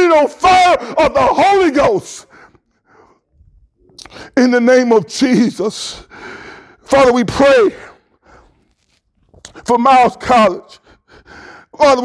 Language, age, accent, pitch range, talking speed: English, 50-69, American, 245-320 Hz, 90 wpm